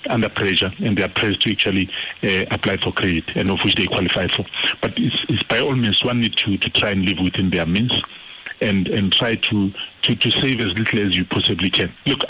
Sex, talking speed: male, 235 wpm